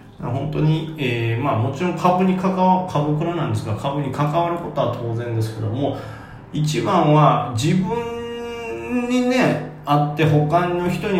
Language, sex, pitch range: Japanese, male, 110-150 Hz